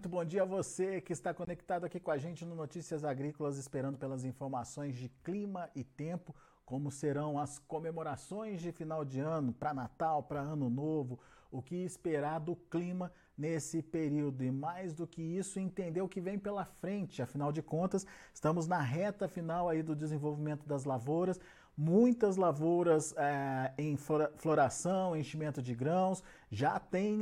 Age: 40-59